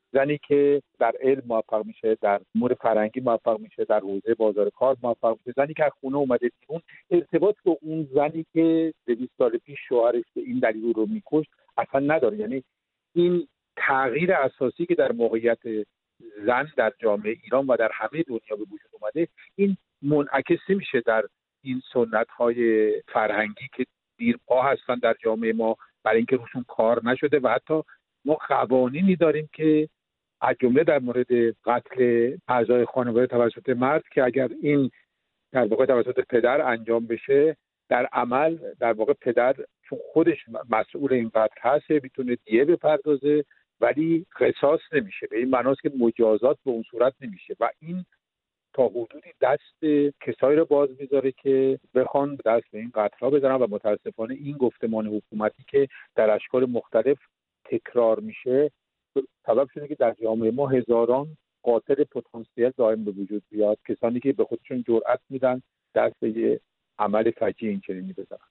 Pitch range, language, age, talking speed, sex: 115-150 Hz, Persian, 50-69, 155 wpm, male